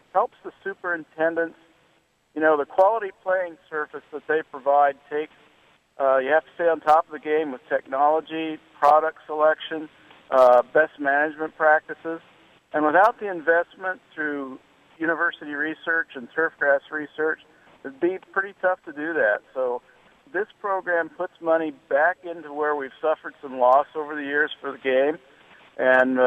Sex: male